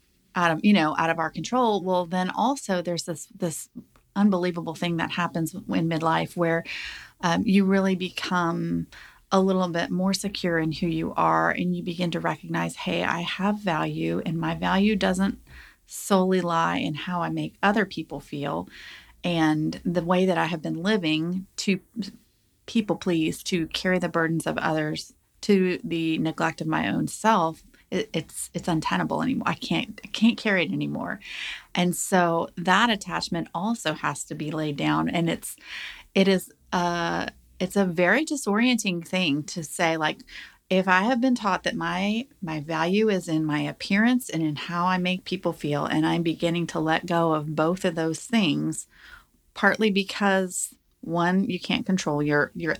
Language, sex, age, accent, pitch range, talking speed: English, female, 30-49, American, 160-190 Hz, 170 wpm